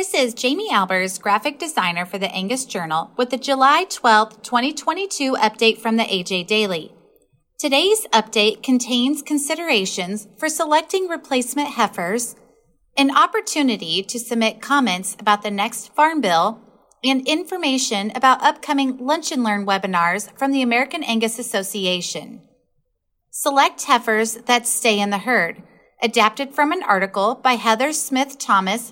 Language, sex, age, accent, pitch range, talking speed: English, female, 30-49, American, 210-275 Hz, 135 wpm